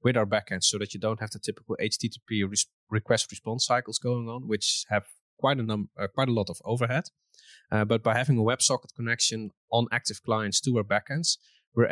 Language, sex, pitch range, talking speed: English, male, 100-120 Hz, 200 wpm